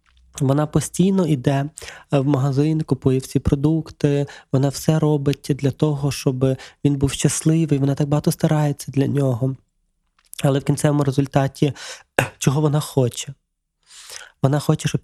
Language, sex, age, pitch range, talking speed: Ukrainian, male, 20-39, 130-150 Hz, 130 wpm